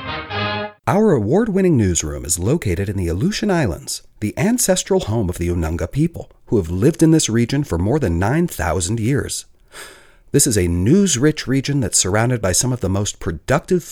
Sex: male